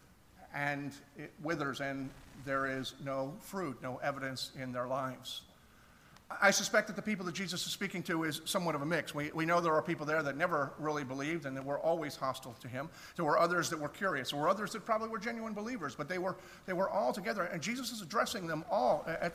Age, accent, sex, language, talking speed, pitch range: 50-69, American, male, English, 230 wpm, 150-195 Hz